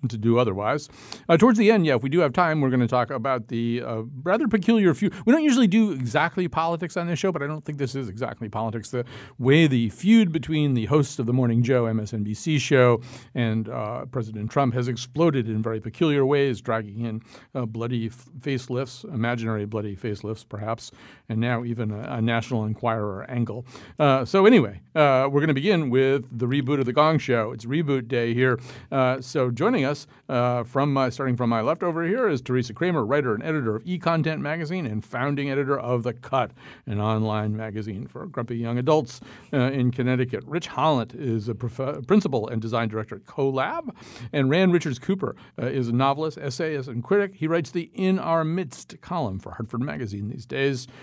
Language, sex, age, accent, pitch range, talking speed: English, male, 50-69, American, 115-150 Hz, 200 wpm